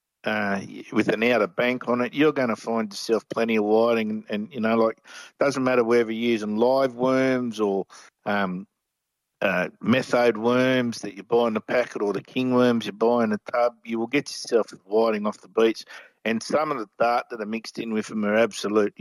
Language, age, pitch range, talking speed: English, 50-69, 110-125 Hz, 215 wpm